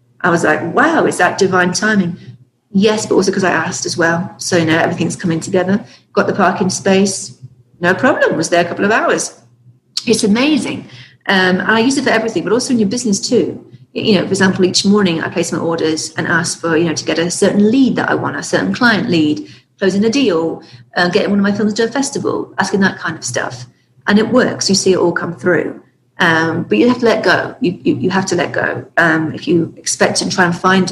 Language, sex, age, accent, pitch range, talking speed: English, female, 40-59, British, 165-205 Hz, 240 wpm